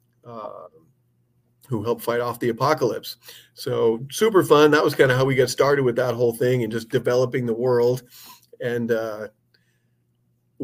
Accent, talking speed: American, 165 wpm